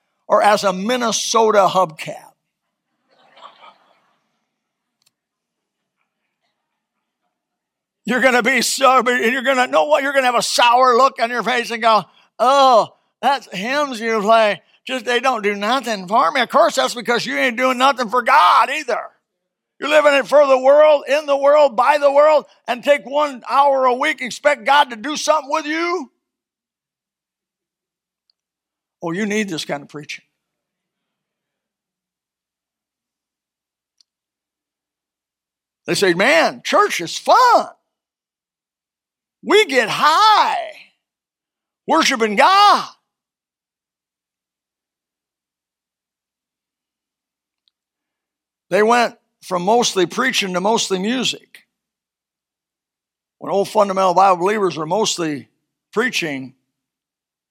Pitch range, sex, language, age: 195-275 Hz, male, English, 60-79